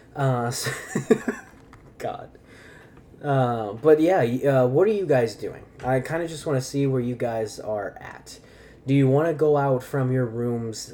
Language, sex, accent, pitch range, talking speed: English, male, American, 115-145 Hz, 180 wpm